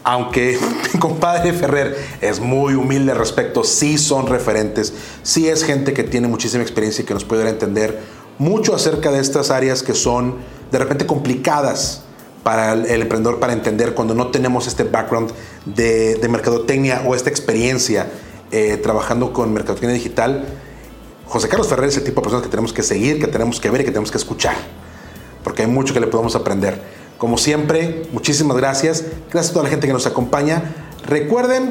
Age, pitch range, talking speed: 30-49, 125-165 Hz, 185 wpm